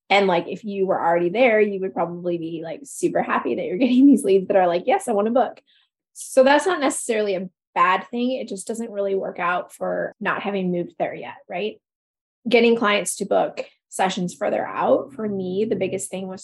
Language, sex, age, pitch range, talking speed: English, female, 20-39, 185-225 Hz, 220 wpm